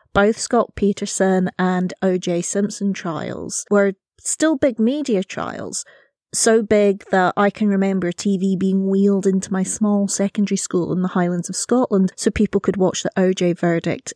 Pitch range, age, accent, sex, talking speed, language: 185-215 Hz, 30-49, British, female, 160 wpm, English